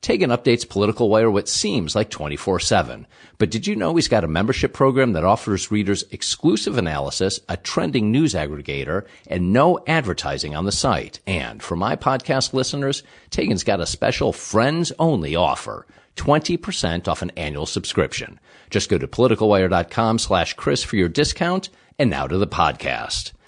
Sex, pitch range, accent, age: male, 90-130 Hz, American, 50-69